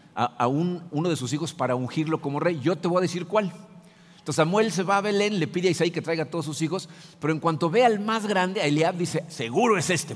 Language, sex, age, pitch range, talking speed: Spanish, male, 50-69, 130-170 Hz, 265 wpm